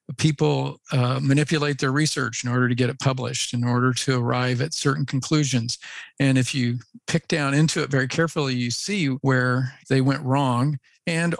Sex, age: male, 50-69